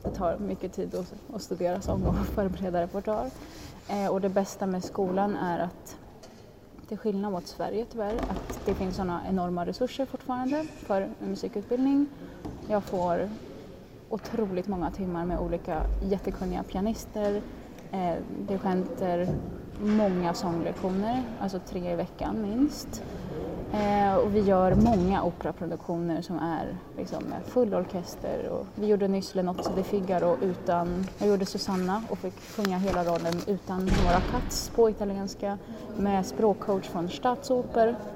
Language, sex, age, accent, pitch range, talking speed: Swedish, female, 20-39, native, 180-210 Hz, 135 wpm